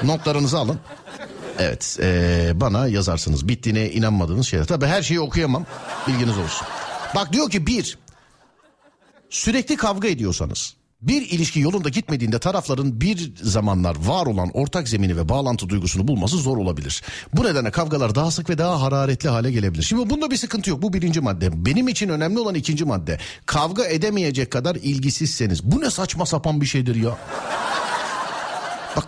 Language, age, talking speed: Turkish, 60-79, 155 wpm